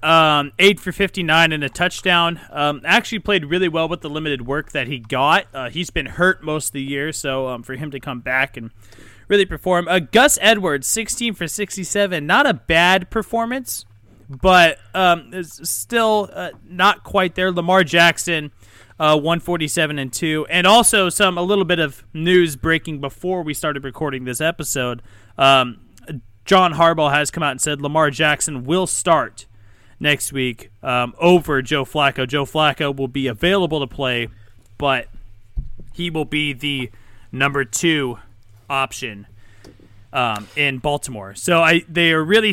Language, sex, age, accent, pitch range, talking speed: English, male, 30-49, American, 130-175 Hz, 170 wpm